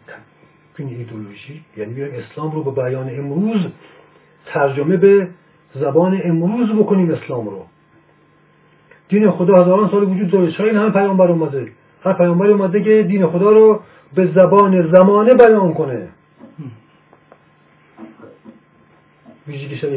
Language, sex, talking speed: Persian, male, 115 wpm